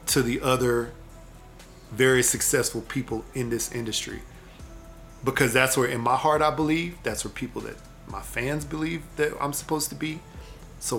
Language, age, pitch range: English, 40-59, 115-135 Hz